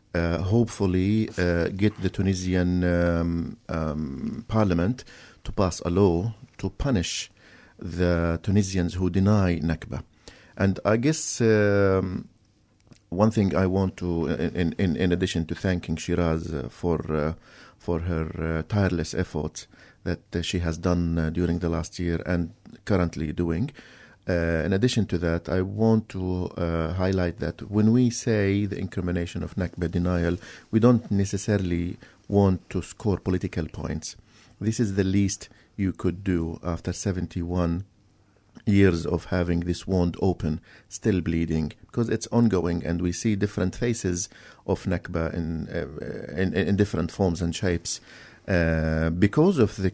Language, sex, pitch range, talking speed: English, male, 85-105 Hz, 145 wpm